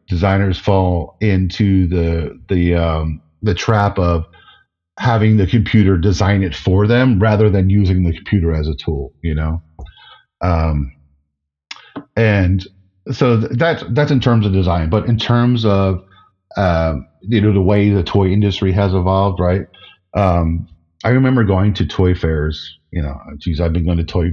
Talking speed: 160 wpm